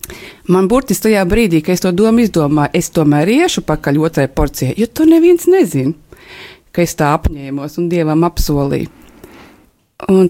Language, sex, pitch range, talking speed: English, female, 170-210 Hz, 155 wpm